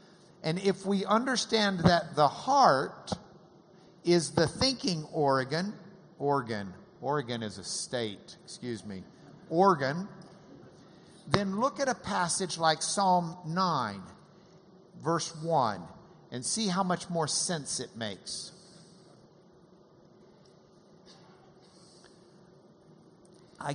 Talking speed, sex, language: 95 wpm, male, English